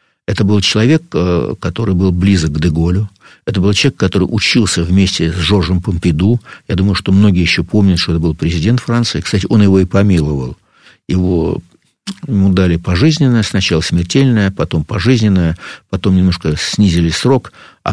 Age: 60-79